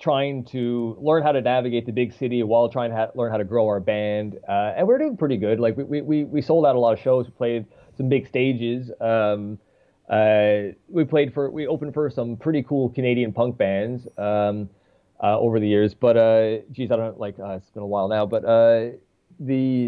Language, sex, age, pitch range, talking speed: English, male, 20-39, 110-140 Hz, 225 wpm